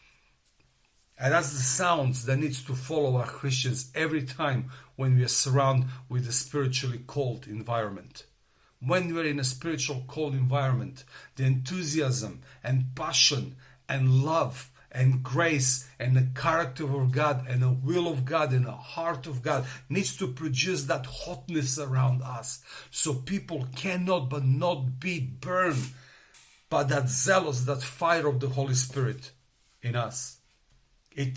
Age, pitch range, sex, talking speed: 50-69, 130-150 Hz, male, 145 wpm